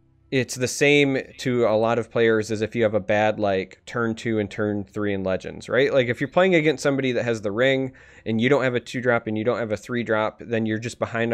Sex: male